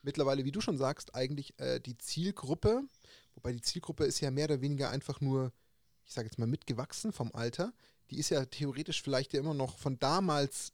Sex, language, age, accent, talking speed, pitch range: male, German, 30-49, German, 200 wpm, 125-150 Hz